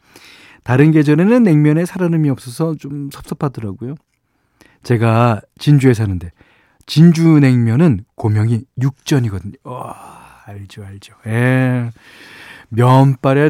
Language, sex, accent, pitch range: Korean, male, native, 110-155 Hz